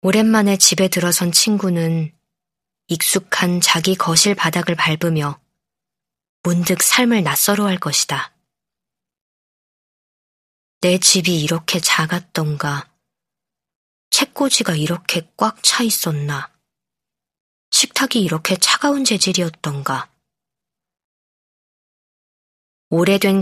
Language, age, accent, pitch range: Korean, 20-39, native, 160-200 Hz